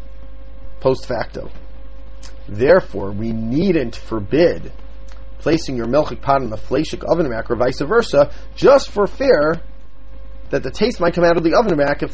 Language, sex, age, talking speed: English, male, 40-59, 155 wpm